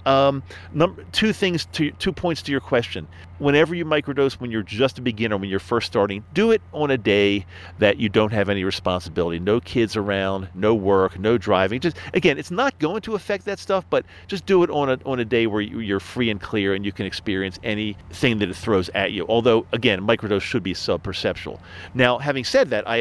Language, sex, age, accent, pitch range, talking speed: English, male, 40-59, American, 95-140 Hz, 220 wpm